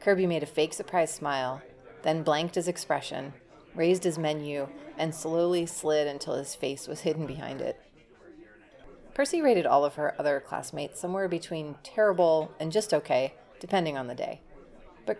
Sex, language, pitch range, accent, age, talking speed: female, English, 150-180 Hz, American, 30-49, 160 wpm